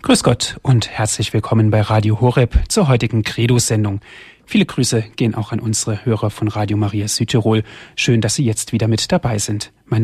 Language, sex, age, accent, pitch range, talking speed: German, male, 30-49, German, 110-135 Hz, 185 wpm